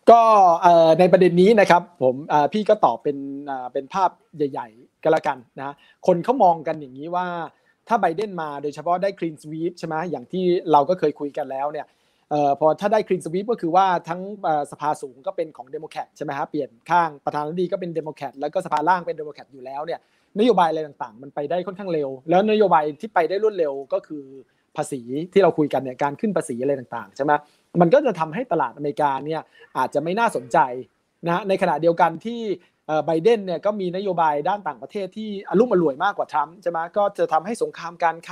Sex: male